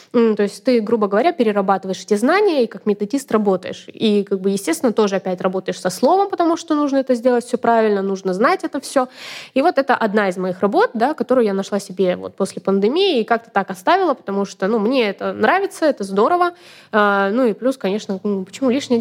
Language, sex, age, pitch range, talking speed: Russian, female, 20-39, 195-255 Hz, 195 wpm